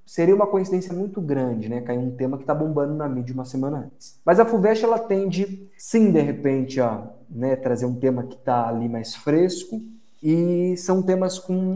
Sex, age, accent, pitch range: male, 20-39, Brazilian, 120-165 Hz